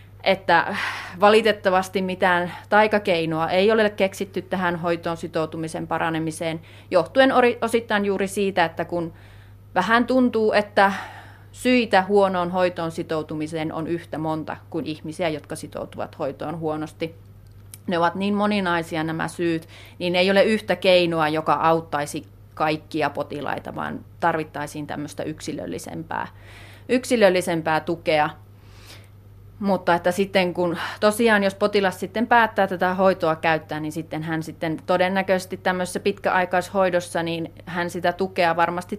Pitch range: 155-190 Hz